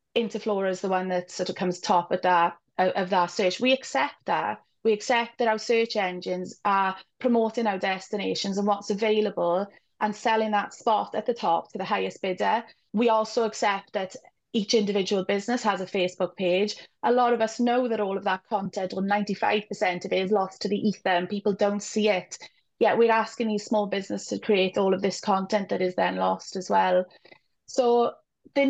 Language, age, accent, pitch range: English, 20-39, British, 190-220 Hz